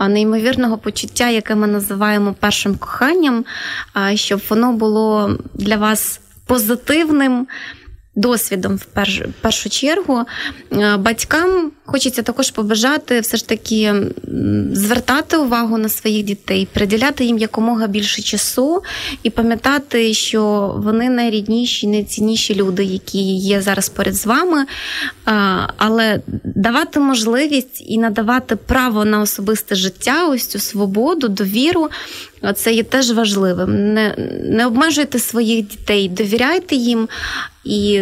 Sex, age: female, 20-39